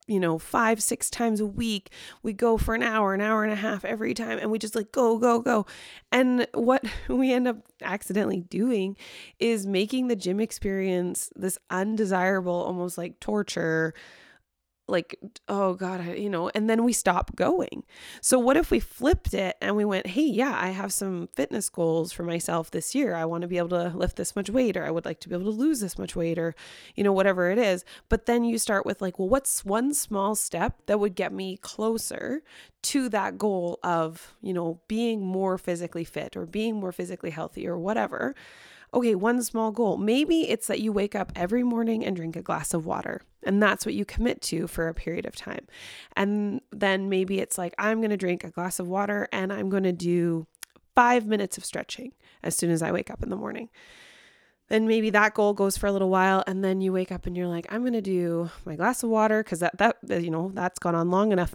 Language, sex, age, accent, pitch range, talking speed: English, female, 20-39, American, 175-225 Hz, 225 wpm